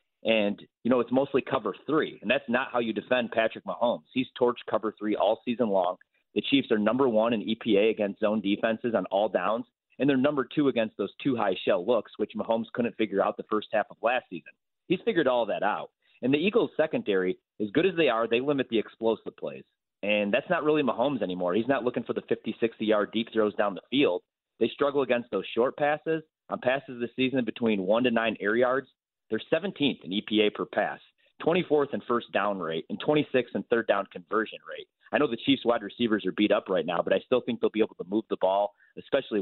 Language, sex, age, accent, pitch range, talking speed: English, male, 30-49, American, 105-140 Hz, 230 wpm